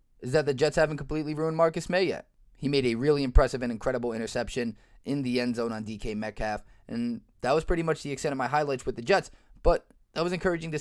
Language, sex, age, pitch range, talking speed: English, male, 20-39, 115-155 Hz, 240 wpm